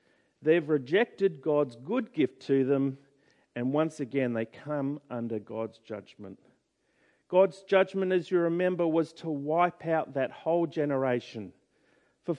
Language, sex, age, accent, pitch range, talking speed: English, male, 50-69, Australian, 120-180 Hz, 135 wpm